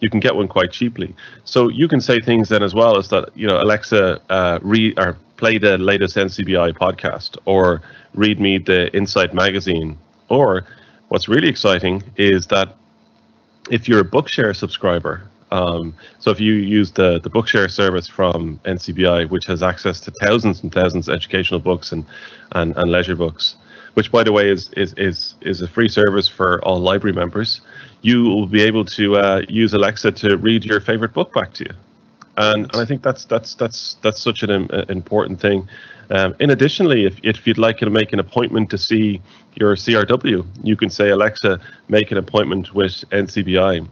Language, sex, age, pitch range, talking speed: English, male, 30-49, 90-110 Hz, 190 wpm